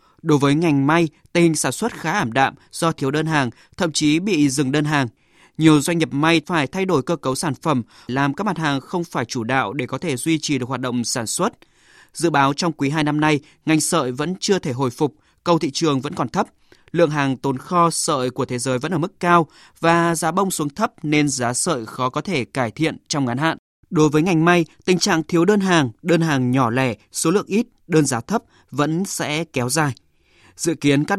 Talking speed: 235 wpm